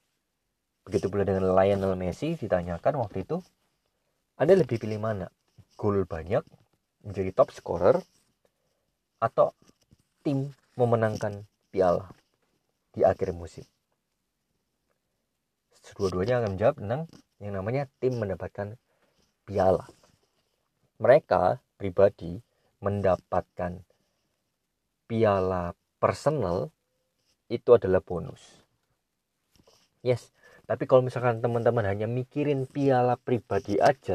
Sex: male